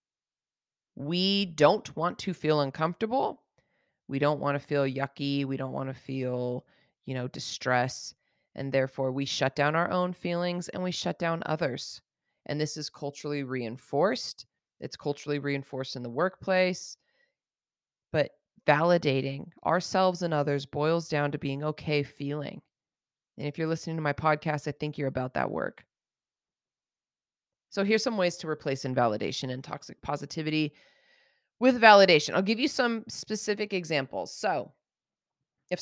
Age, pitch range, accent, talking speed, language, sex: 30-49, 140-185 Hz, American, 145 wpm, English, female